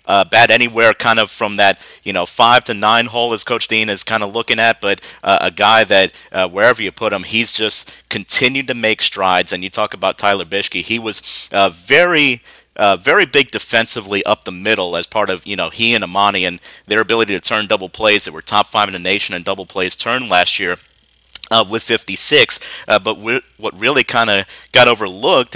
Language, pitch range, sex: English, 100-115 Hz, male